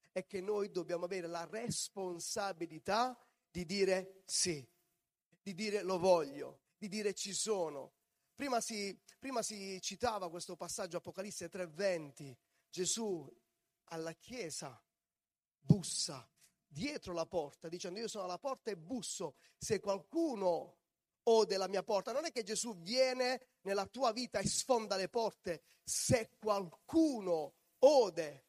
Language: Italian